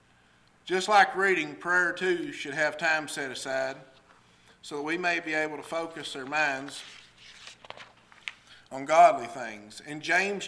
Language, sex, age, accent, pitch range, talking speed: English, male, 50-69, American, 140-165 Hz, 145 wpm